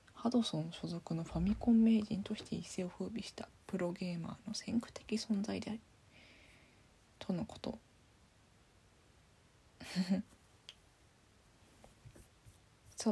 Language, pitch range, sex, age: Japanese, 175-230 Hz, female, 20-39